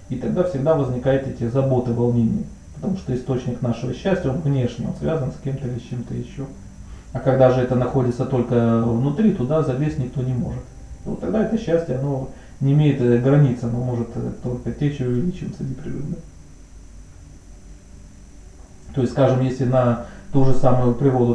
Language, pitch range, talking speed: Russian, 115-135 Hz, 165 wpm